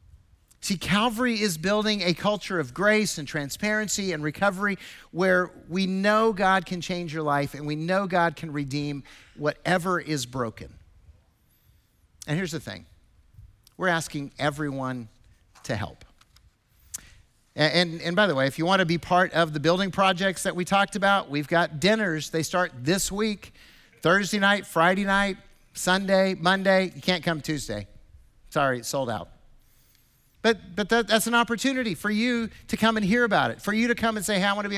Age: 50-69